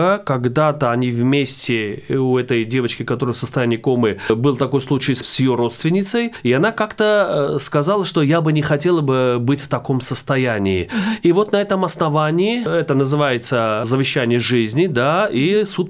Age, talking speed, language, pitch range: 30-49, 160 wpm, Russian, 130-195 Hz